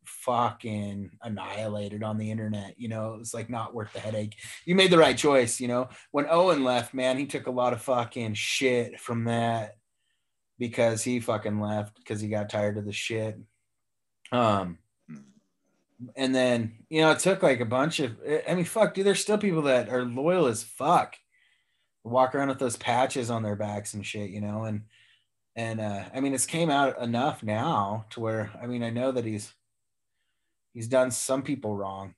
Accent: American